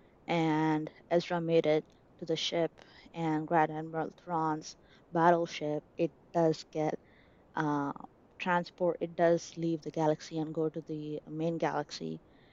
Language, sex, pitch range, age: English, female, 160-195 Hz, 20-39